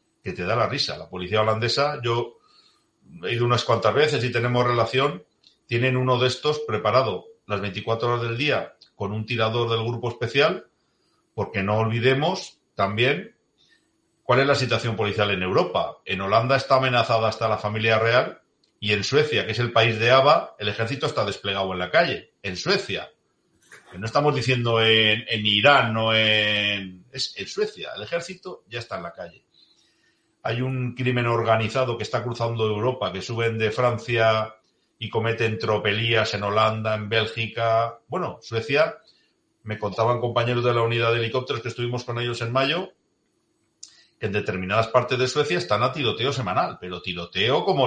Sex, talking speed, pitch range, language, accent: male, 170 wpm, 105-125 Hz, Spanish, Spanish